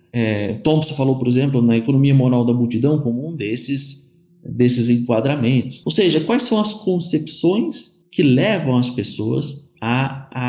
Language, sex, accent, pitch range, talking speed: Portuguese, male, Brazilian, 125-165 Hz, 155 wpm